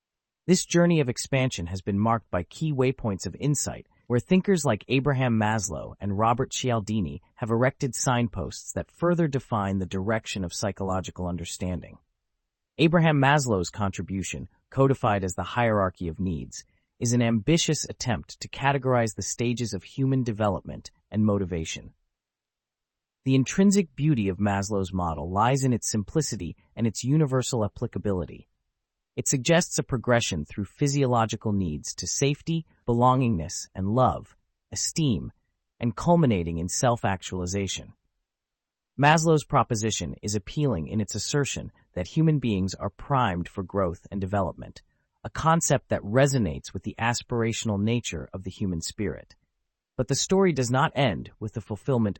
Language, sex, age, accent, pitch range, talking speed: English, male, 30-49, American, 95-130 Hz, 140 wpm